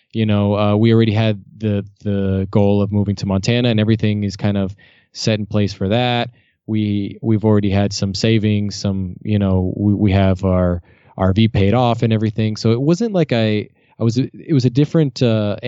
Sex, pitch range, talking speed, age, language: male, 100-120 Hz, 205 wpm, 20-39, English